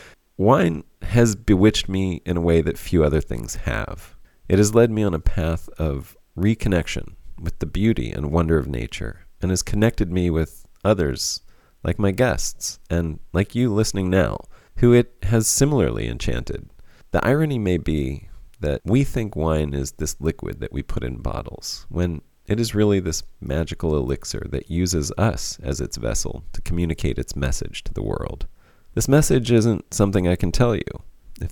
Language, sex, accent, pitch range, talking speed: English, male, American, 80-105 Hz, 175 wpm